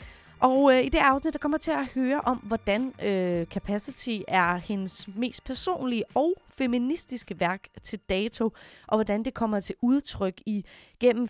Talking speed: 165 wpm